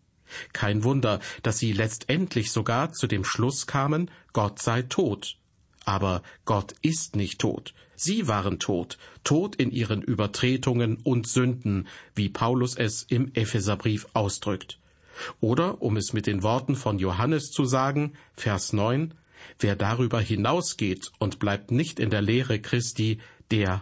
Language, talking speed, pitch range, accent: German, 140 wpm, 105-130 Hz, German